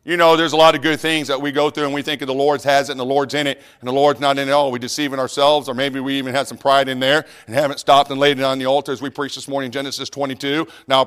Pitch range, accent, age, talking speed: 115-140 Hz, American, 40-59, 345 wpm